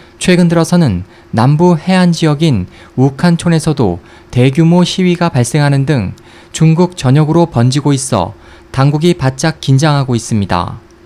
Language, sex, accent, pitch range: Korean, male, native, 120-165 Hz